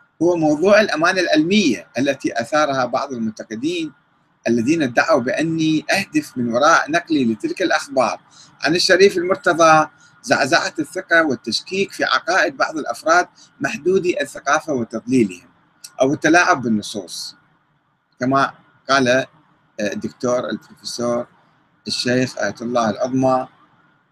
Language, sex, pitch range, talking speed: Arabic, male, 125-200 Hz, 100 wpm